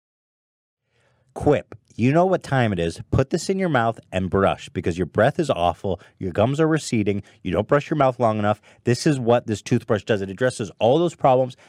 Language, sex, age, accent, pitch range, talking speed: English, male, 30-49, American, 105-145 Hz, 210 wpm